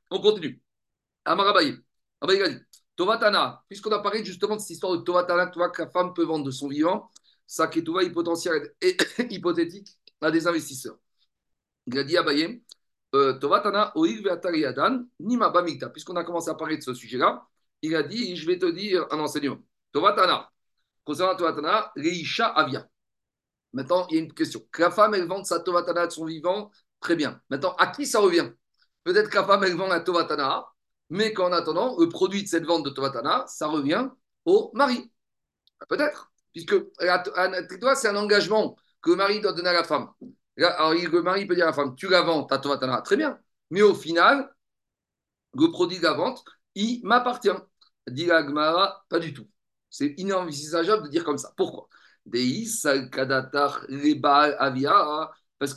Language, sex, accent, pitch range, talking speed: French, male, French, 155-225 Hz, 180 wpm